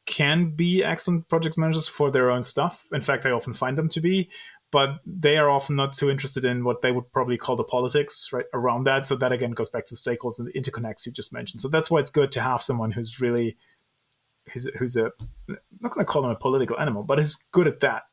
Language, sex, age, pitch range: English, male, 30-49, 125-160 Hz